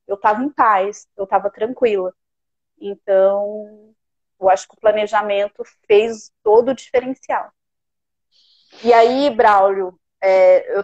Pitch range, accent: 205-255 Hz, Brazilian